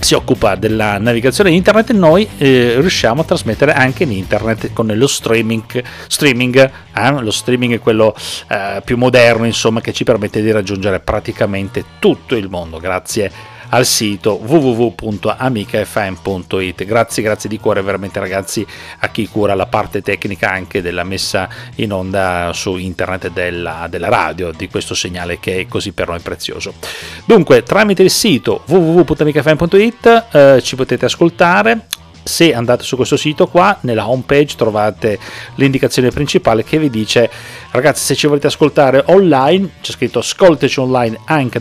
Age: 40-59